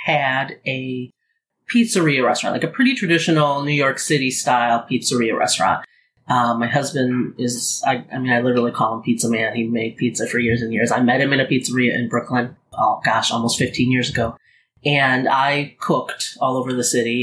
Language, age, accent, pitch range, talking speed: English, 30-49, American, 125-150 Hz, 190 wpm